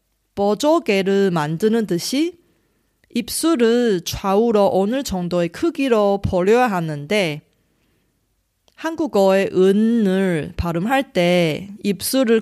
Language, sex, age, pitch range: Korean, female, 30-49, 150-225 Hz